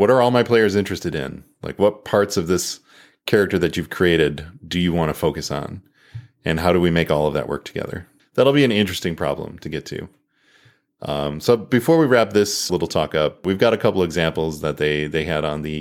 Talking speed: 230 wpm